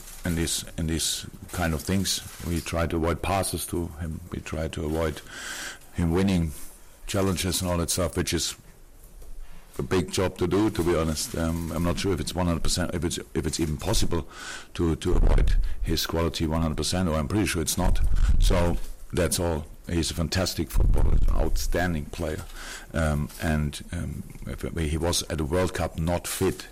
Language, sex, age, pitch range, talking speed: English, male, 50-69, 80-90 Hz, 190 wpm